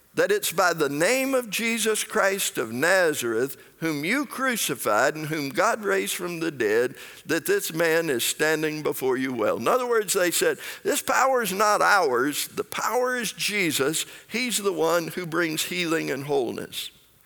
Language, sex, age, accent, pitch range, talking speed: English, male, 60-79, American, 155-240 Hz, 175 wpm